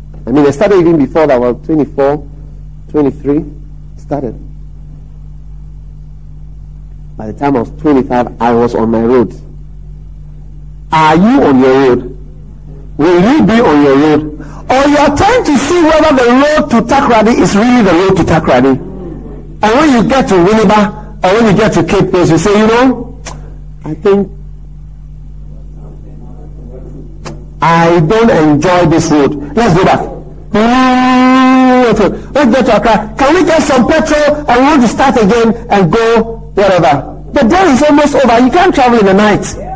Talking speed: 165 wpm